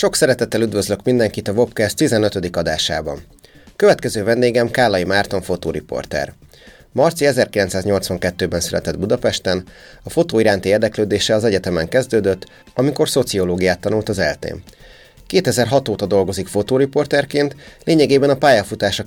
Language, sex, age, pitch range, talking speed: Hungarian, male, 30-49, 95-125 Hz, 110 wpm